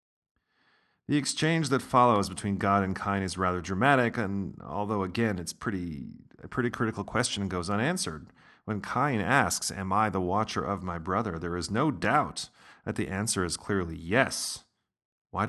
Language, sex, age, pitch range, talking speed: English, male, 40-59, 90-110 Hz, 170 wpm